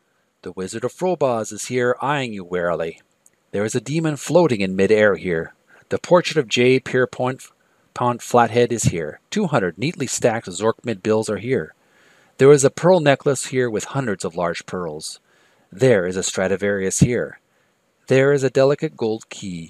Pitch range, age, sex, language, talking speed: 105-135 Hz, 40-59, male, English, 165 wpm